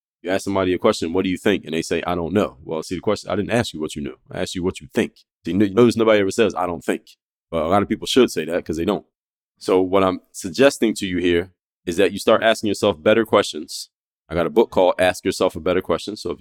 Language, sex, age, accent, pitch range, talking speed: English, male, 20-39, American, 90-110 Hz, 290 wpm